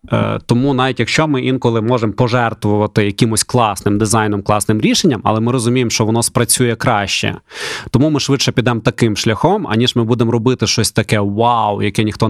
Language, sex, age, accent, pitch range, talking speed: Ukrainian, male, 20-39, native, 105-130 Hz, 170 wpm